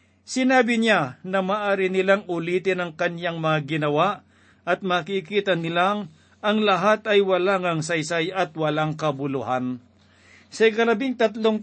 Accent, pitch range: native, 155-195 Hz